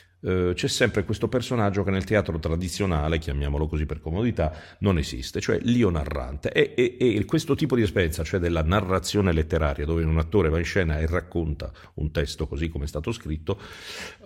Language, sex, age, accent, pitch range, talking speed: Italian, male, 50-69, native, 80-105 Hz, 190 wpm